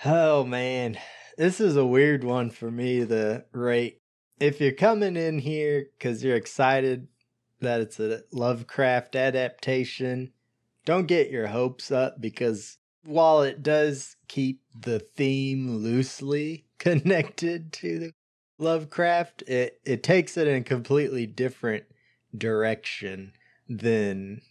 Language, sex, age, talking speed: English, male, 20-39, 120 wpm